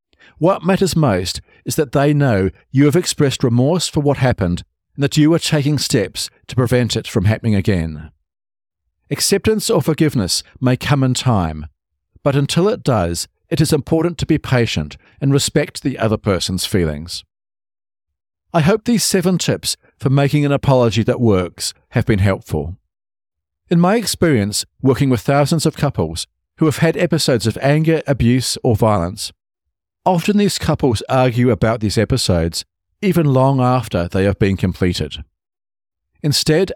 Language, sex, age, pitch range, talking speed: English, male, 50-69, 95-150 Hz, 155 wpm